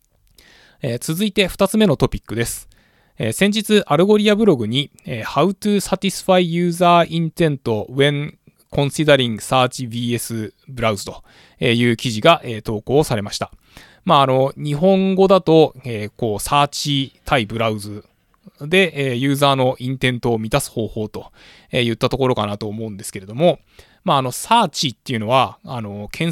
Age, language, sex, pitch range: 20-39, Japanese, male, 115-160 Hz